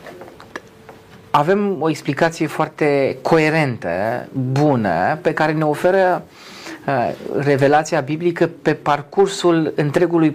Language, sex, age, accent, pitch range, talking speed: Romanian, male, 30-49, native, 130-170 Hz, 85 wpm